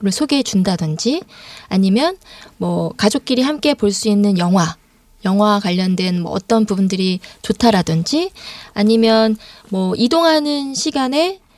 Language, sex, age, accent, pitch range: Korean, female, 20-39, native, 200-280 Hz